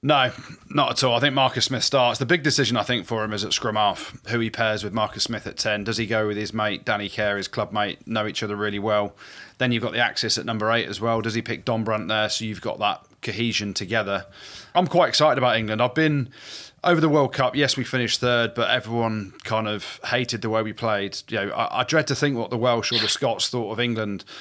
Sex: male